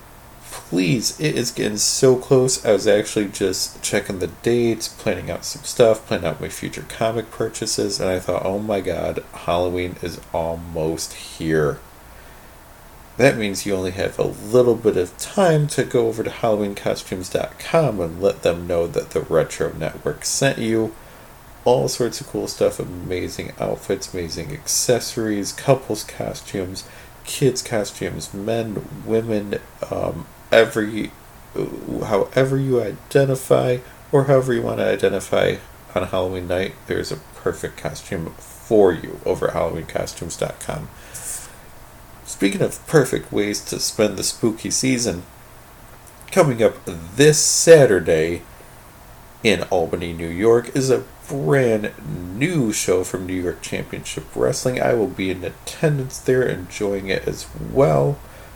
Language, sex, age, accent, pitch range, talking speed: English, male, 40-59, American, 95-130 Hz, 135 wpm